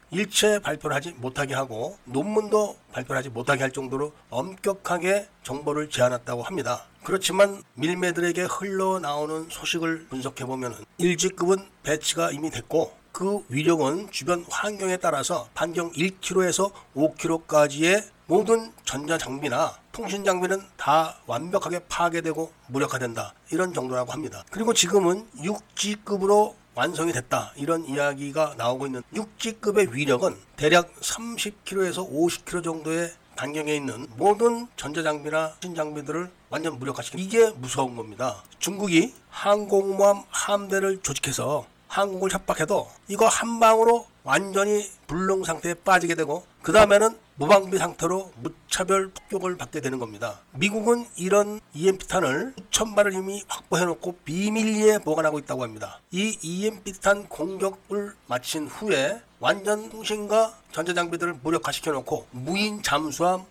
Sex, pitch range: male, 150-200 Hz